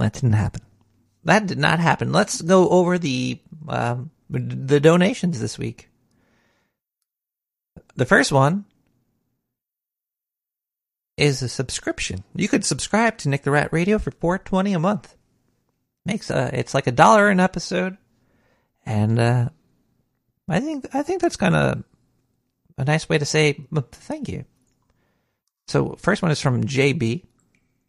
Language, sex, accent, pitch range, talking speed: English, male, American, 125-160 Hz, 135 wpm